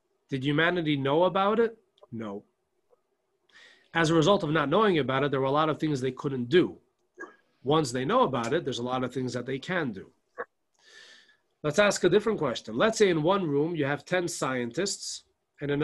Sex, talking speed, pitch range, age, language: male, 200 wpm, 150-220 Hz, 40-59, English